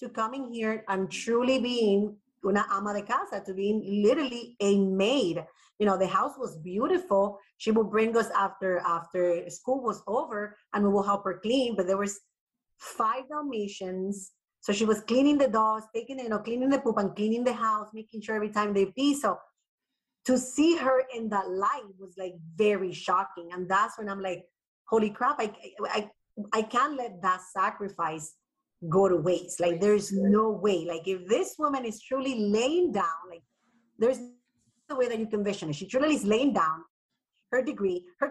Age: 30-49